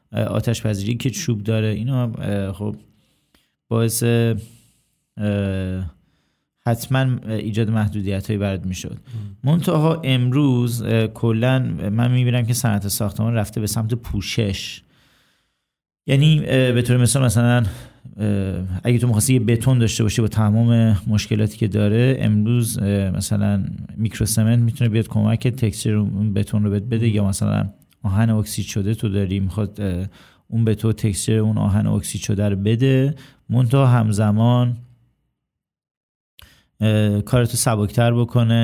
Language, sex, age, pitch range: Persian, male, 40-59, 105-120 Hz